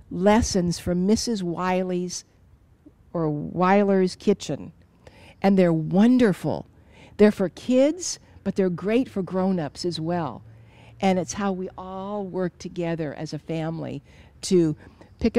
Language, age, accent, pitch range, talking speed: English, 60-79, American, 155-200 Hz, 125 wpm